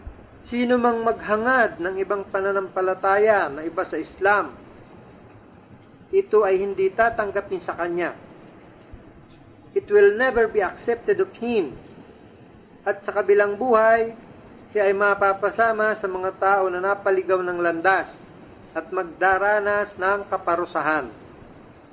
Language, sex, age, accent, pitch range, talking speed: Filipino, male, 40-59, native, 190-230 Hz, 110 wpm